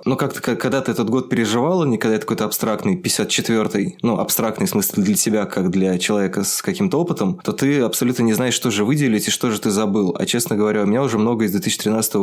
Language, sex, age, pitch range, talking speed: Russian, male, 20-39, 100-115 Hz, 235 wpm